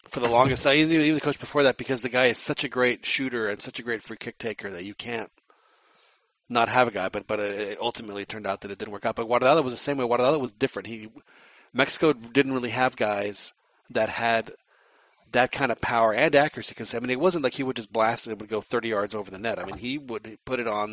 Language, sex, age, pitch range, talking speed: English, male, 40-59, 110-140 Hz, 260 wpm